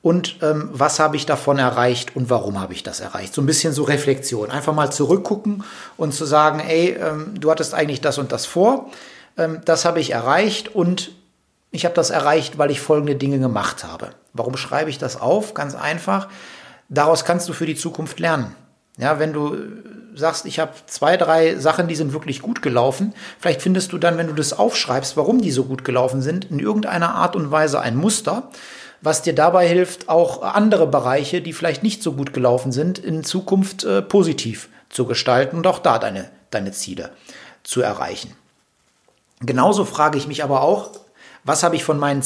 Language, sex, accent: German, male, German